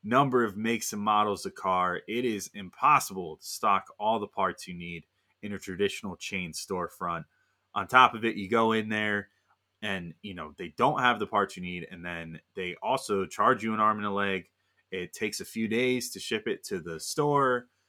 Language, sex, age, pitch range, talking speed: English, male, 20-39, 90-110 Hz, 210 wpm